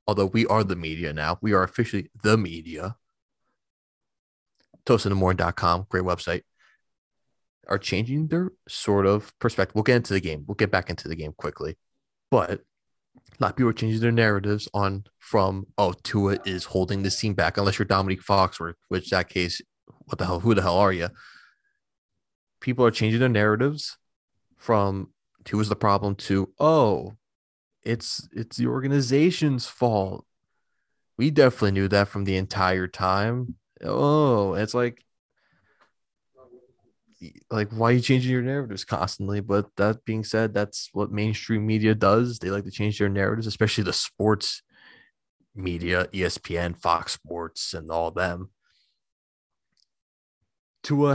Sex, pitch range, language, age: male, 95-115 Hz, English, 20-39